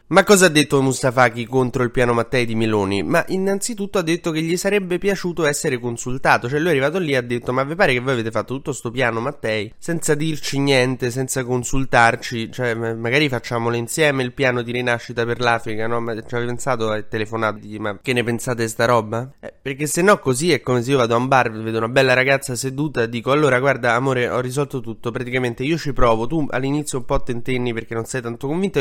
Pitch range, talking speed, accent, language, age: 115-145 Hz, 225 wpm, native, Italian, 20-39